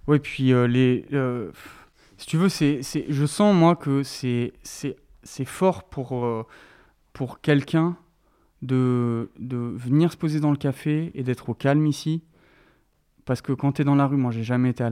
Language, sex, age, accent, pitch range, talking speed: French, male, 20-39, French, 125-155 Hz, 195 wpm